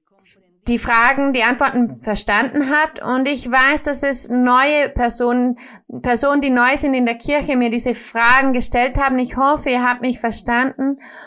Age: 20-39